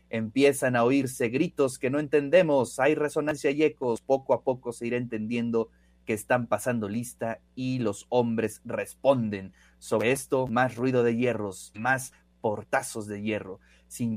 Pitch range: 105-130 Hz